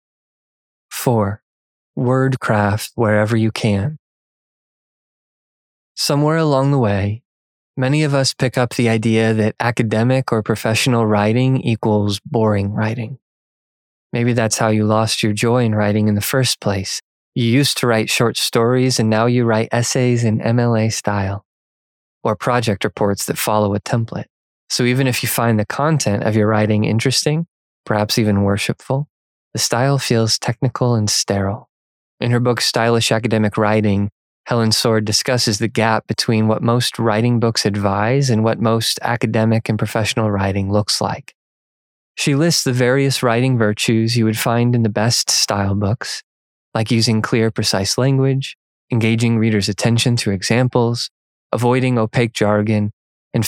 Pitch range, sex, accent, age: 105-125 Hz, male, American, 20-39